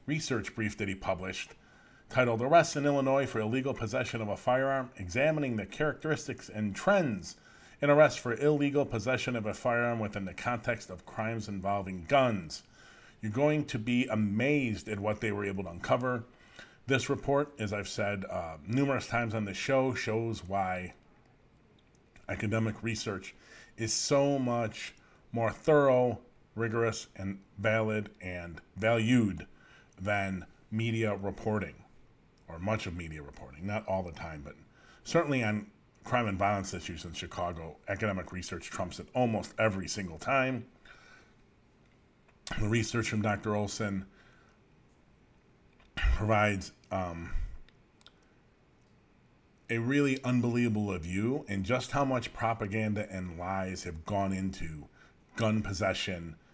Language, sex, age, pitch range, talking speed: English, male, 40-59, 95-125 Hz, 130 wpm